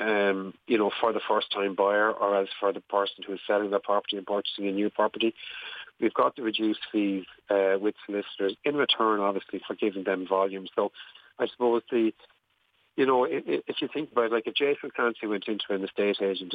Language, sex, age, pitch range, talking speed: English, male, 40-59, 100-115 Hz, 215 wpm